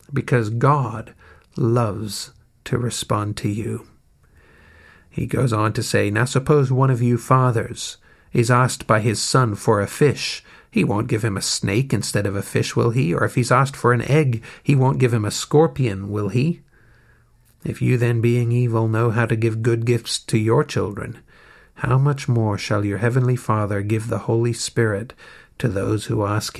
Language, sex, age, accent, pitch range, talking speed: English, male, 50-69, American, 110-130 Hz, 185 wpm